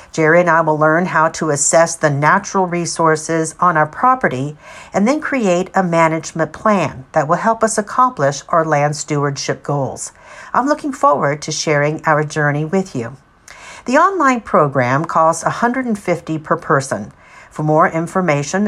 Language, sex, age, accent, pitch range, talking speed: English, female, 50-69, American, 150-205 Hz, 155 wpm